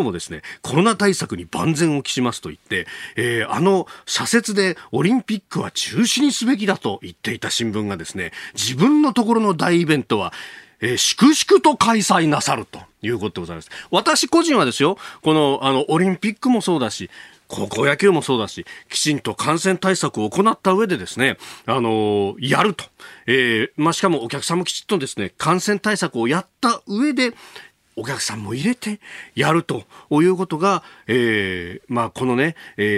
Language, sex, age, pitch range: Japanese, male, 40-59, 120-205 Hz